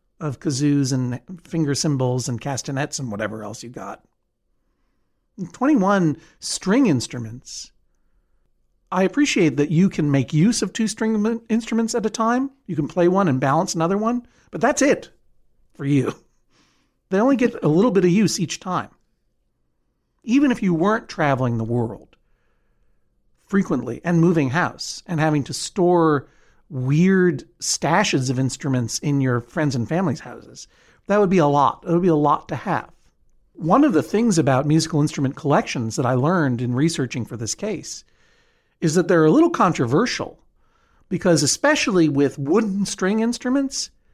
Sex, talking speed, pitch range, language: male, 160 wpm, 135-190 Hz, English